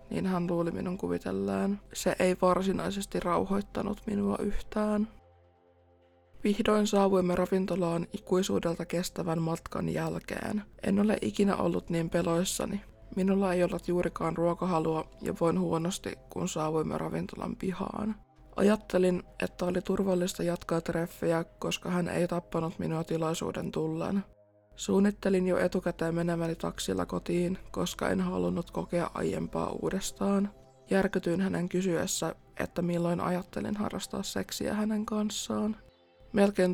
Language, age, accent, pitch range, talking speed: Finnish, 20-39, native, 165-195 Hz, 120 wpm